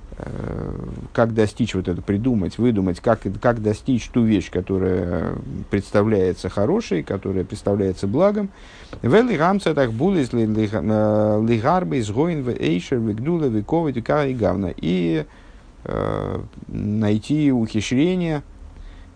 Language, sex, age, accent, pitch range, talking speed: Russian, male, 50-69, native, 100-140 Hz, 65 wpm